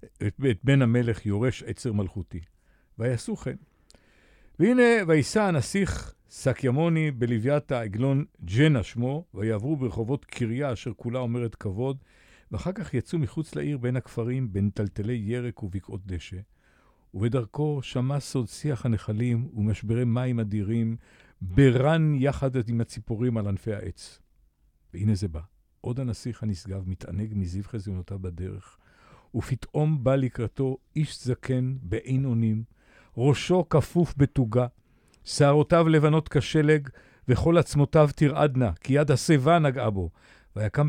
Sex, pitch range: male, 105-145 Hz